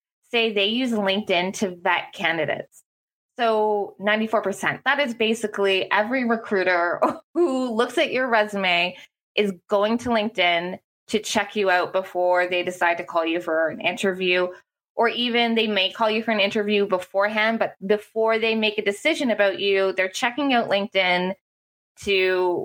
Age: 20-39